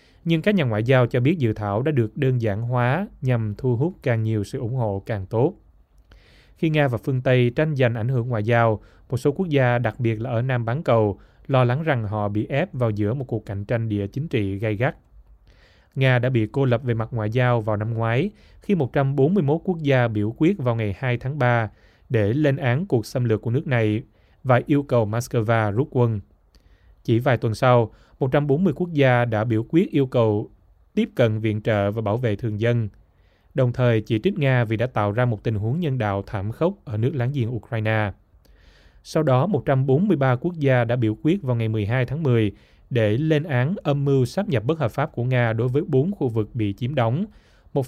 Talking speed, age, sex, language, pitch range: 220 wpm, 20-39, male, Vietnamese, 105-135 Hz